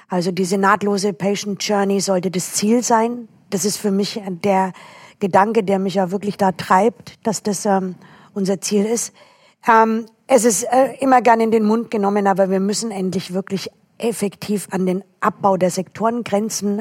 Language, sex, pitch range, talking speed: German, female, 190-220 Hz, 170 wpm